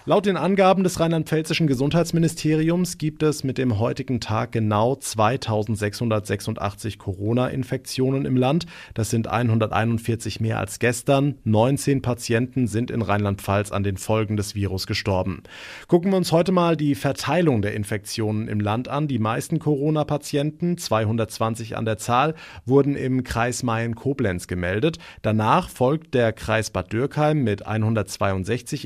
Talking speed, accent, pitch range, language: 135 wpm, German, 110-140 Hz, German